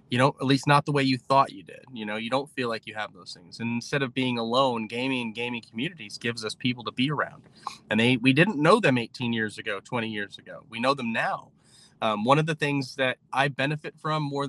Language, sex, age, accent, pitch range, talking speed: English, male, 20-39, American, 115-140 Hz, 255 wpm